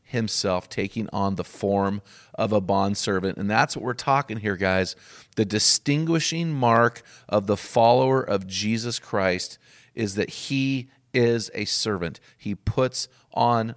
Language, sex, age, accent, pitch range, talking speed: English, male, 40-59, American, 100-130 Hz, 145 wpm